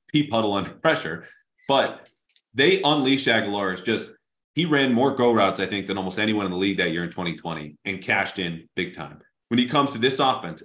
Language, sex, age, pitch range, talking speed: English, male, 30-49, 100-120 Hz, 210 wpm